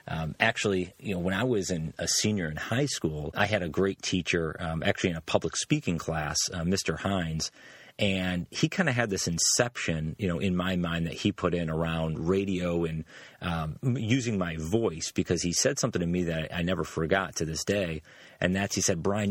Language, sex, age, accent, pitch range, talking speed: English, male, 30-49, American, 85-105 Hz, 220 wpm